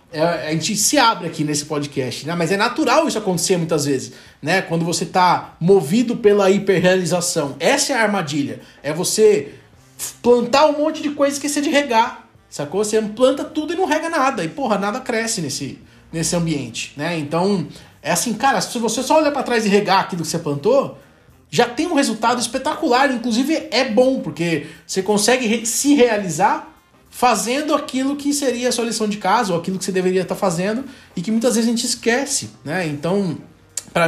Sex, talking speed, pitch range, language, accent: male, 190 wpm, 160-240 Hz, Portuguese, Brazilian